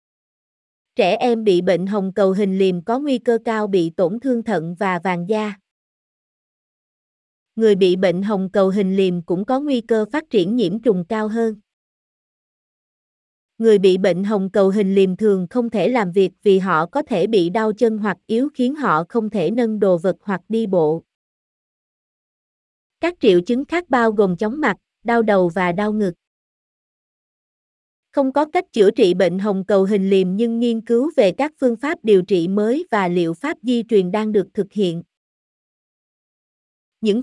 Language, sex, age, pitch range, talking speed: Vietnamese, female, 20-39, 190-240 Hz, 175 wpm